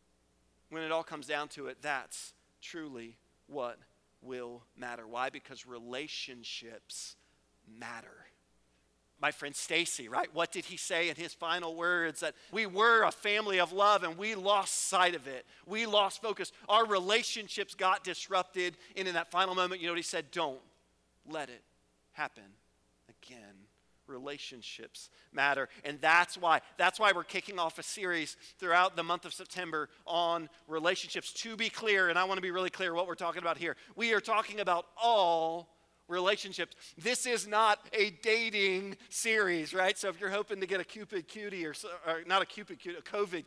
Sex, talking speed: male, 175 wpm